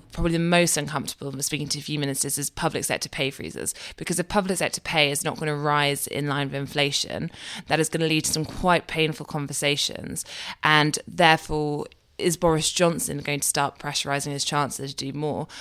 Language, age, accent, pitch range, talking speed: English, 20-39, British, 140-170 Hz, 200 wpm